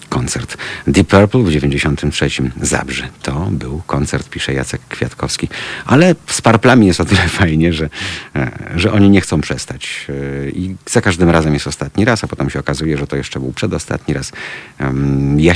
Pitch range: 70-90 Hz